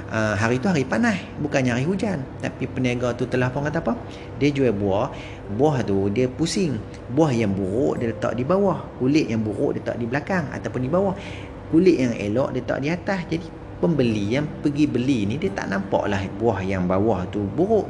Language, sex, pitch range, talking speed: Malay, male, 100-155 Hz, 200 wpm